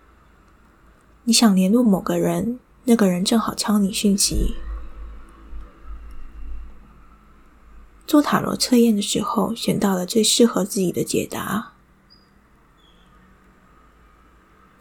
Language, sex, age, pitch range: Chinese, female, 20-39, 180-230 Hz